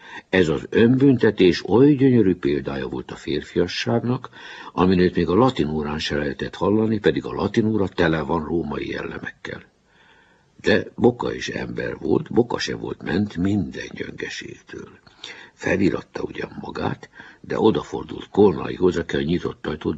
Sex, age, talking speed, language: male, 60-79, 130 wpm, Hungarian